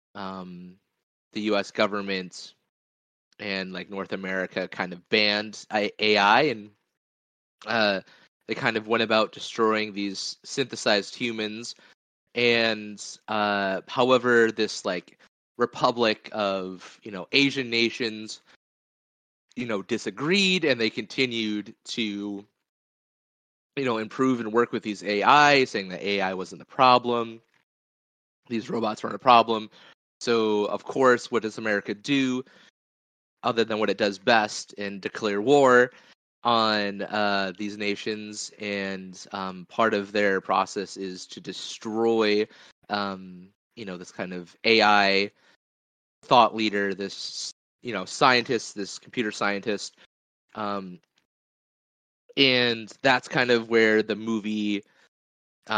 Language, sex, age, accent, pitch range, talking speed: English, male, 20-39, American, 95-115 Hz, 125 wpm